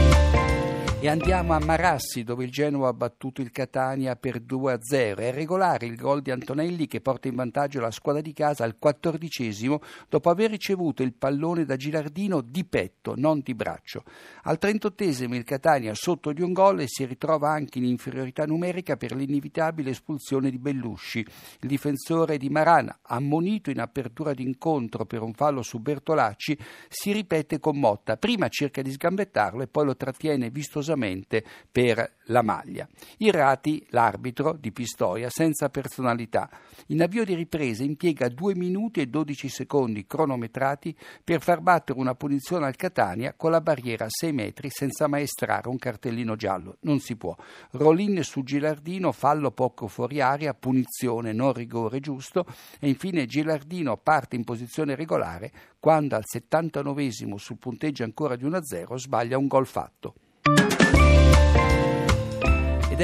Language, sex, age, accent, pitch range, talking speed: Italian, male, 60-79, native, 125-155 Hz, 150 wpm